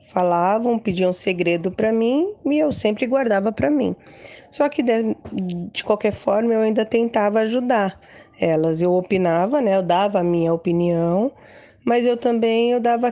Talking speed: 155 wpm